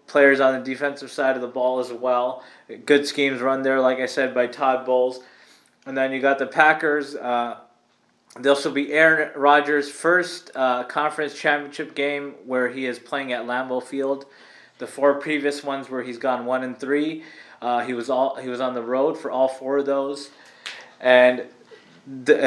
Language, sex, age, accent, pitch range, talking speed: English, male, 20-39, American, 130-150 Hz, 185 wpm